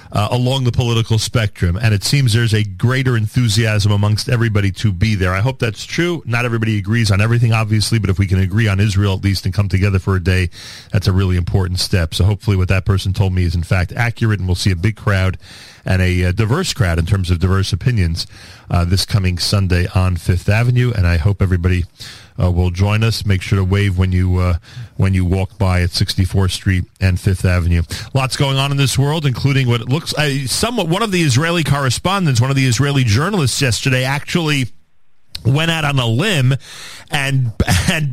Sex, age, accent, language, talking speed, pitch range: male, 40-59, American, English, 215 wpm, 100-140 Hz